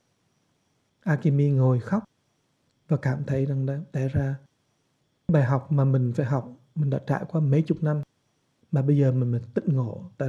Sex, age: male, 60-79